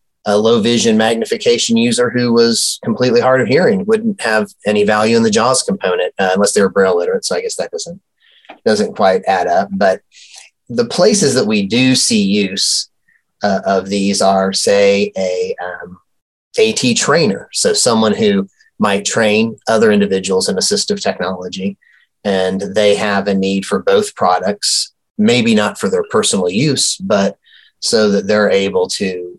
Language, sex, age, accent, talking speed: English, male, 30-49, American, 165 wpm